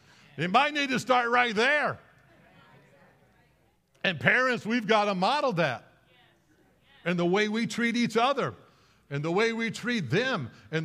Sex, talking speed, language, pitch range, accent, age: male, 155 wpm, English, 140-215 Hz, American, 60-79